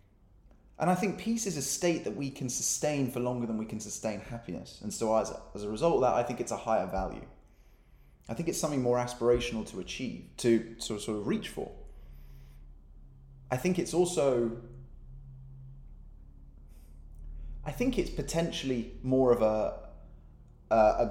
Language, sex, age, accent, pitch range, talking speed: English, male, 20-39, British, 110-140 Hz, 170 wpm